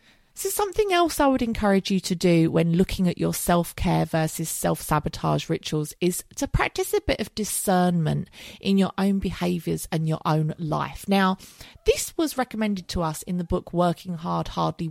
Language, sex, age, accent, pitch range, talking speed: English, female, 30-49, British, 165-230 Hz, 175 wpm